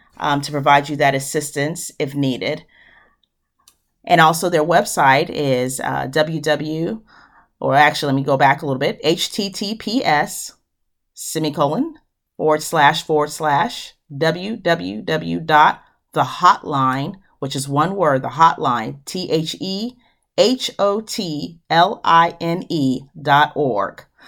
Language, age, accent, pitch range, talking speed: English, 40-59, American, 140-175 Hz, 95 wpm